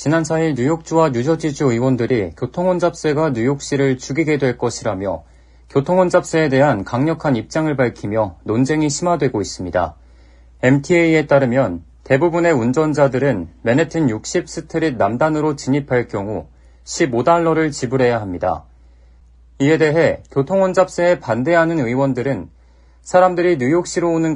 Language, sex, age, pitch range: Korean, male, 40-59, 110-165 Hz